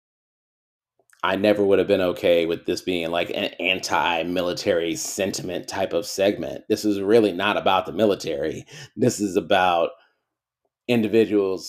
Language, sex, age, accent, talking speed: English, male, 30-49, American, 145 wpm